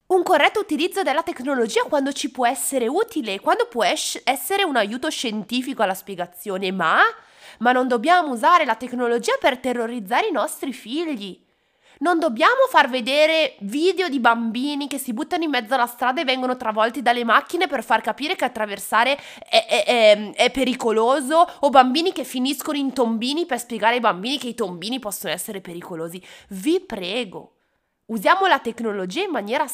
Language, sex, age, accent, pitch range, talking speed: Italian, female, 20-39, native, 220-325 Hz, 165 wpm